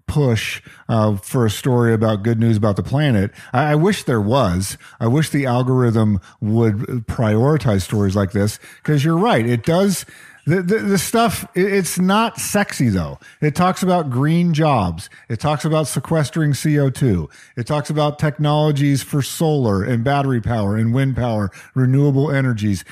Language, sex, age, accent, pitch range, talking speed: English, male, 40-59, American, 115-160 Hz, 160 wpm